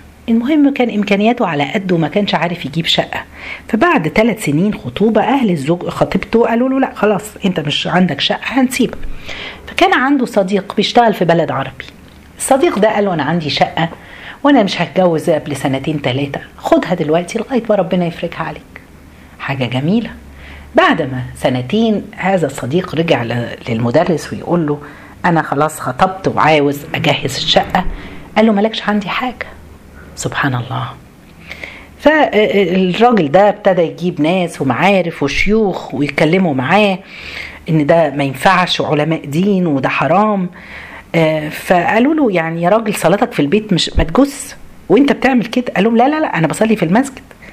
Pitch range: 155-215 Hz